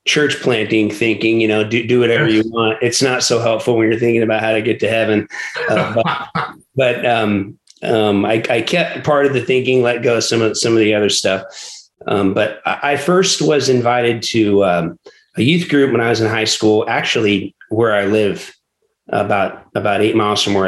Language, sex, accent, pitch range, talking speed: English, male, American, 105-130 Hz, 210 wpm